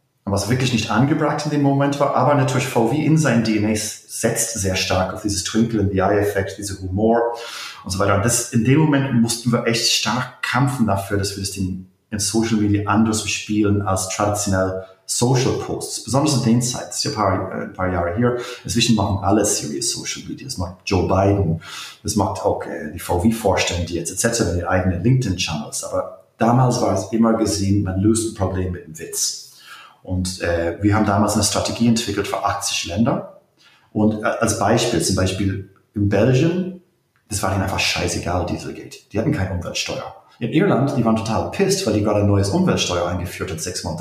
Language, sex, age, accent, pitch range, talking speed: German, male, 30-49, German, 95-125 Hz, 195 wpm